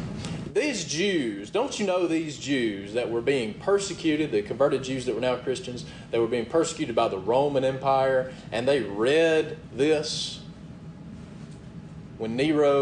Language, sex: English, male